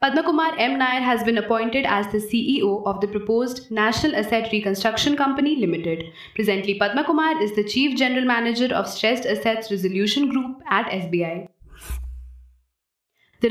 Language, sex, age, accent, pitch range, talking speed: English, female, 20-39, Indian, 195-255 Hz, 140 wpm